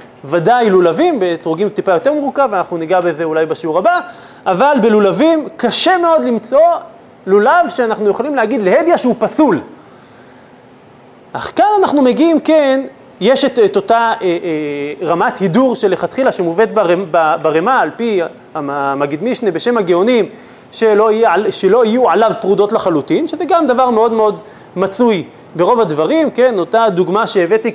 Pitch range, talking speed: 180-255 Hz, 145 wpm